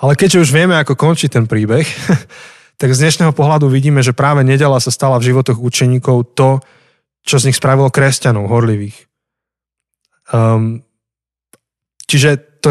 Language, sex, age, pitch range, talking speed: Slovak, male, 20-39, 120-145 Hz, 145 wpm